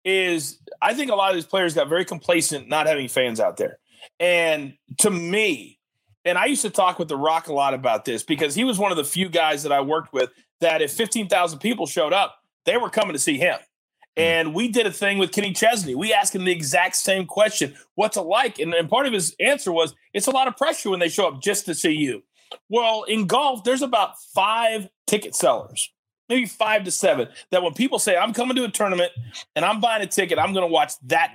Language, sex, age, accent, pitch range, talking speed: English, male, 40-59, American, 170-245 Hz, 235 wpm